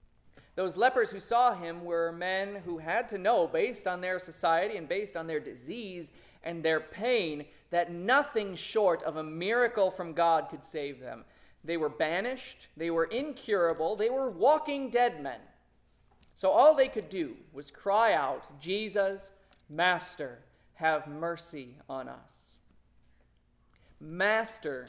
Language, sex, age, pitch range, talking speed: English, male, 30-49, 155-235 Hz, 145 wpm